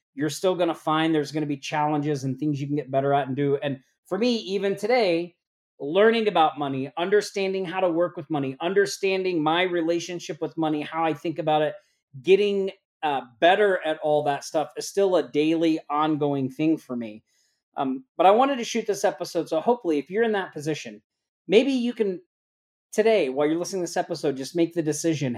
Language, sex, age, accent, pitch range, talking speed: English, male, 40-59, American, 140-185 Hz, 205 wpm